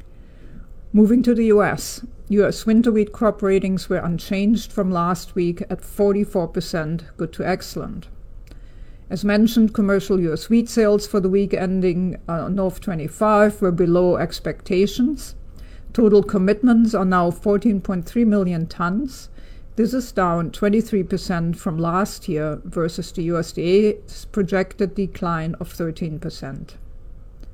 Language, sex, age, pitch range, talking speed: English, female, 50-69, 170-210 Hz, 120 wpm